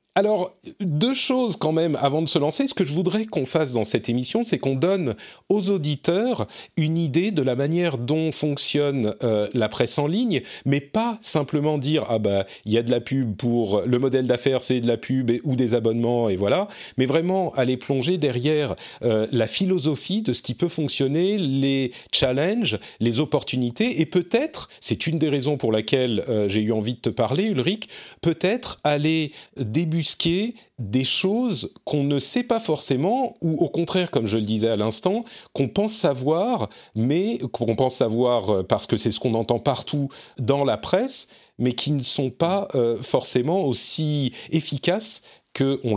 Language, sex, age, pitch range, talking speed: French, male, 40-59, 120-170 Hz, 185 wpm